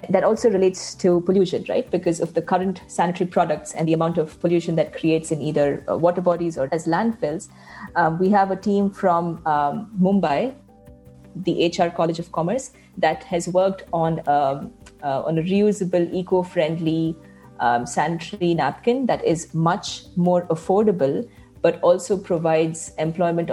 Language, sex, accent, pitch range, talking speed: English, female, Indian, 155-180 Hz, 150 wpm